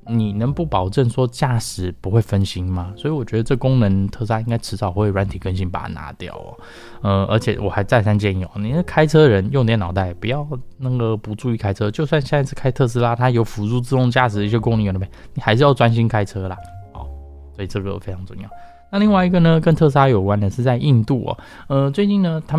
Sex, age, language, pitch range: male, 20-39, Chinese, 100-130 Hz